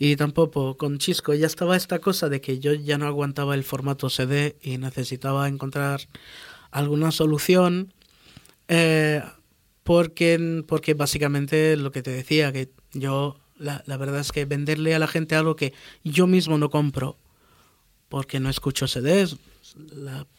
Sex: male